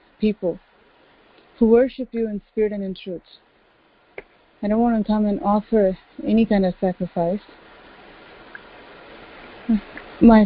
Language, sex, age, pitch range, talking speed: English, female, 30-49, 195-220 Hz, 120 wpm